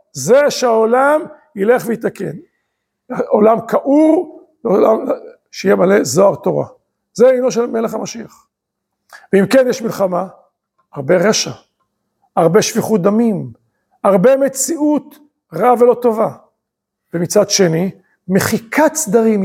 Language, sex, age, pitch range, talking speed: Hebrew, male, 50-69, 195-270 Hz, 100 wpm